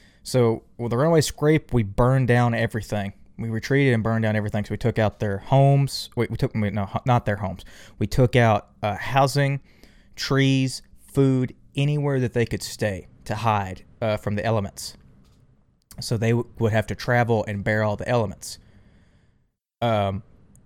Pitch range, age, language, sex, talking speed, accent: 105-125 Hz, 20-39, English, male, 175 wpm, American